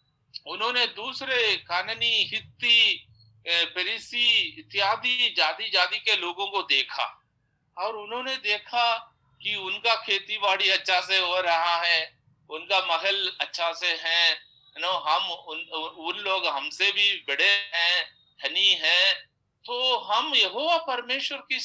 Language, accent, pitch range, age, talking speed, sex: Hindi, native, 175-235 Hz, 50-69, 120 wpm, male